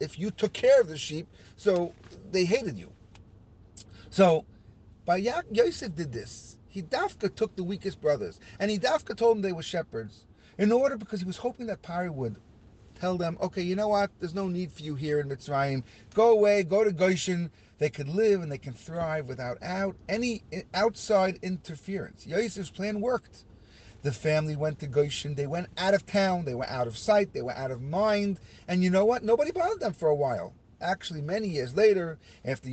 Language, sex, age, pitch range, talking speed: English, male, 40-59, 125-195 Hz, 200 wpm